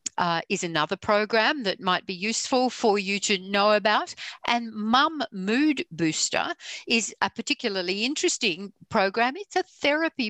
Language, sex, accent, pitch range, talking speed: English, female, Australian, 185-235 Hz, 145 wpm